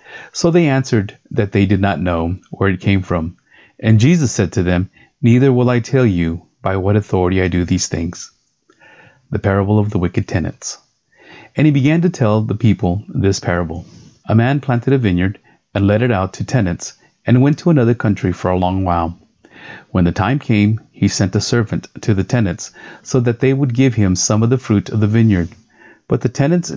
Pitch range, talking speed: 95-125 Hz, 205 wpm